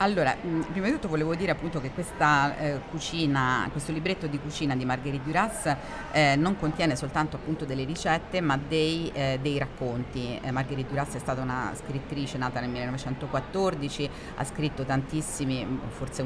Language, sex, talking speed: Italian, female, 165 wpm